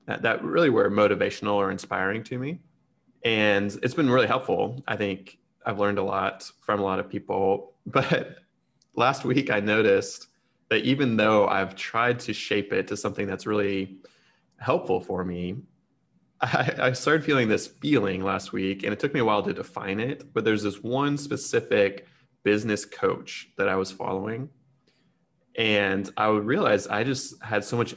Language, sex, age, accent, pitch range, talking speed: English, male, 20-39, American, 100-125 Hz, 175 wpm